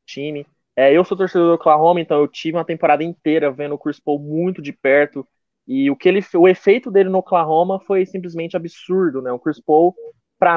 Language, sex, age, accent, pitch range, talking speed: Portuguese, male, 20-39, Brazilian, 150-190 Hz, 195 wpm